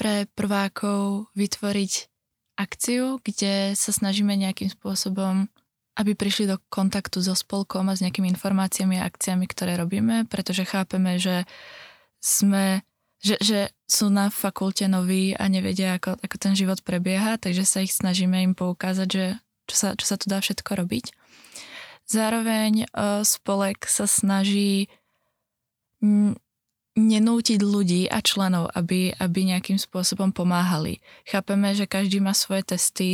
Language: Czech